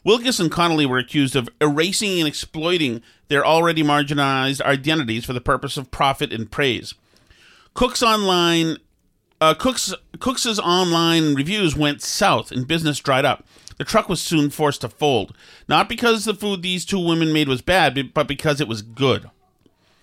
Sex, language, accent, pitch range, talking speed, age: male, English, American, 140-180 Hz, 165 wpm, 40-59